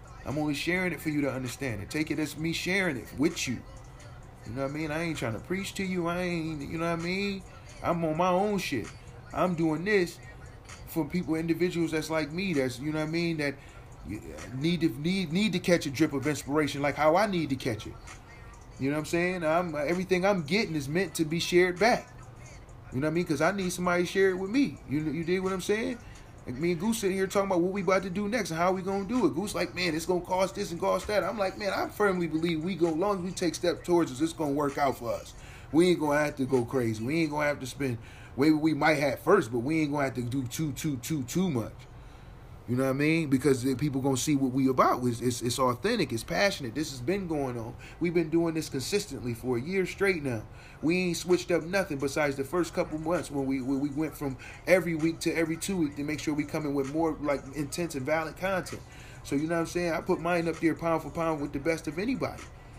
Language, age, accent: English, 30-49, American